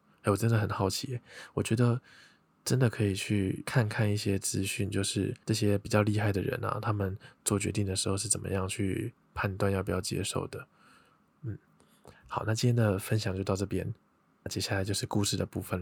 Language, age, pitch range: Chinese, 20-39, 95-110 Hz